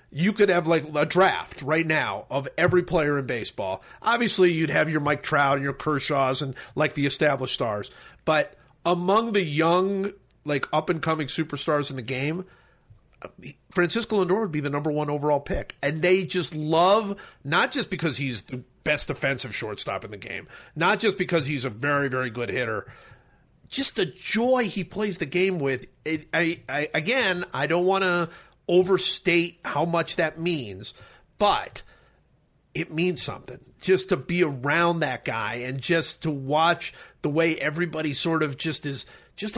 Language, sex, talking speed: English, male, 165 wpm